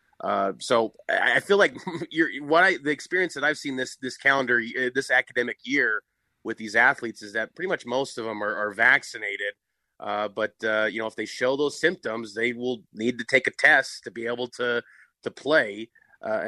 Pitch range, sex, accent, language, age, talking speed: 115-140 Hz, male, American, English, 30-49, 205 wpm